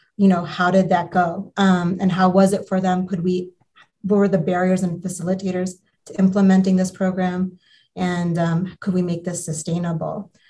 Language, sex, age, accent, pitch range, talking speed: English, female, 30-49, American, 180-205 Hz, 185 wpm